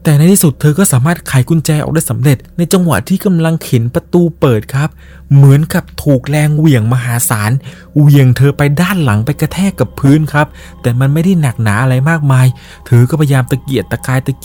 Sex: male